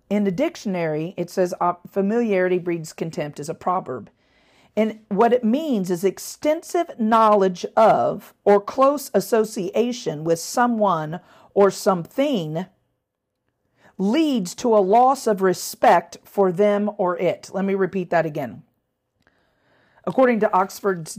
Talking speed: 125 wpm